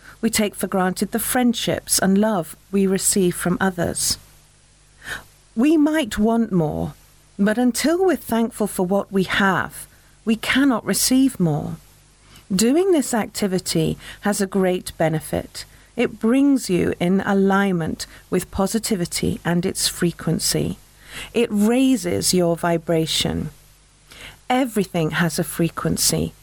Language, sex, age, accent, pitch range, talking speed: English, female, 40-59, British, 175-230 Hz, 120 wpm